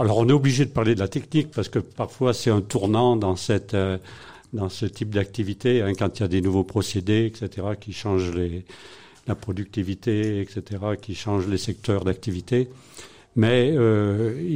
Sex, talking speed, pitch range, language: male, 175 wpm, 100-120 Hz, French